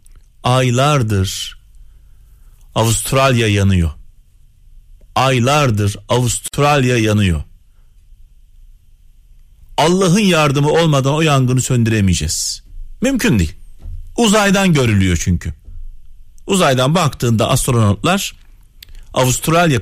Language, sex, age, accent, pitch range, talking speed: Turkish, male, 40-59, native, 95-155 Hz, 65 wpm